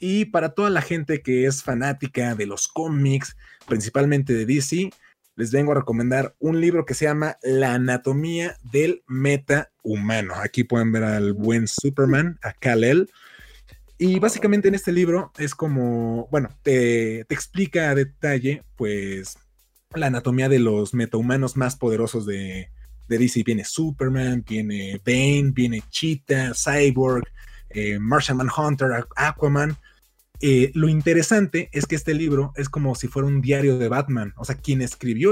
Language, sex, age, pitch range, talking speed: Spanish, male, 20-39, 120-150 Hz, 155 wpm